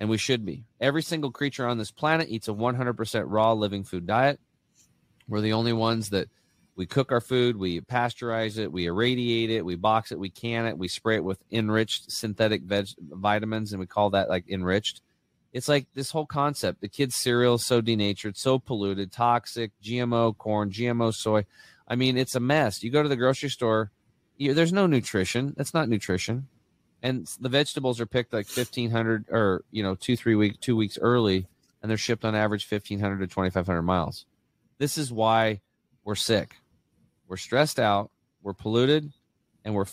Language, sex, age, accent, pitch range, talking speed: English, male, 30-49, American, 105-125 Hz, 190 wpm